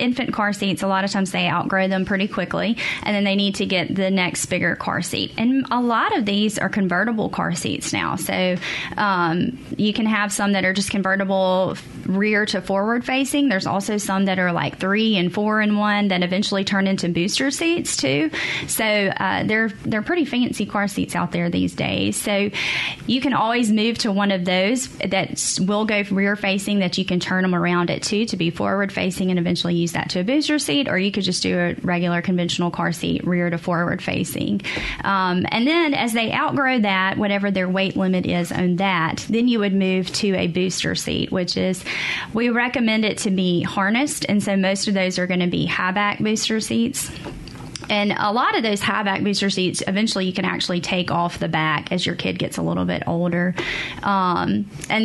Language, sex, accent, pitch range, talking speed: English, female, American, 185-215 Hz, 215 wpm